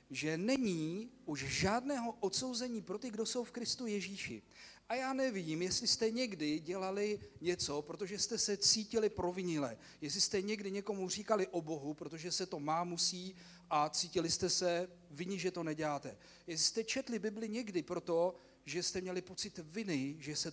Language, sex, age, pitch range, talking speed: Czech, male, 40-59, 150-200 Hz, 170 wpm